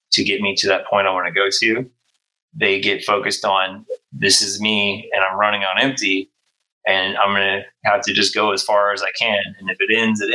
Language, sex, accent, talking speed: English, male, American, 230 wpm